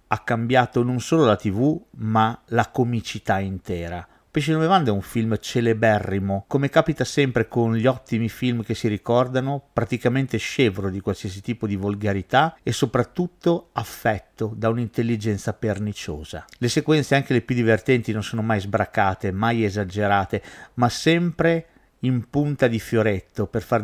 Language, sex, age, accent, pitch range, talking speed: Italian, male, 50-69, native, 105-130 Hz, 145 wpm